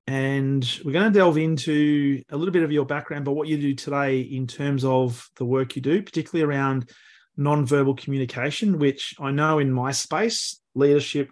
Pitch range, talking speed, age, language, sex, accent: 130-150 Hz, 185 wpm, 30-49, English, male, Australian